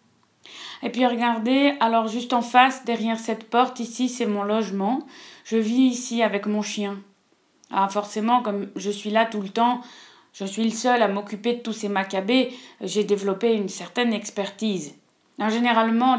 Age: 20-39